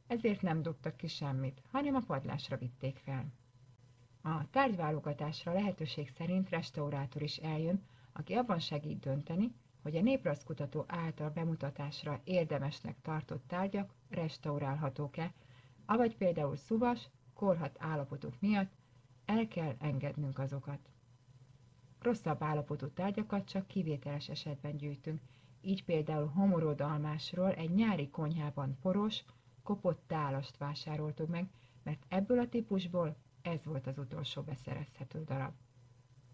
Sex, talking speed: female, 110 wpm